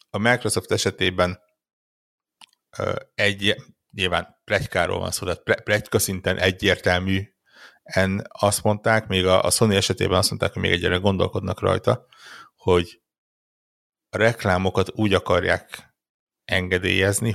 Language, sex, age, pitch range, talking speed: Hungarian, male, 60-79, 90-105 Hz, 105 wpm